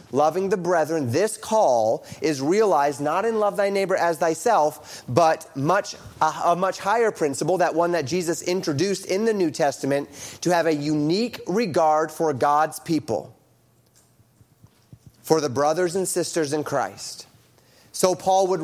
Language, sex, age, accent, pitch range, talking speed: English, male, 30-49, American, 155-195 Hz, 155 wpm